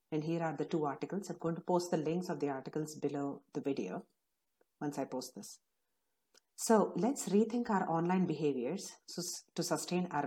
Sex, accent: female, Indian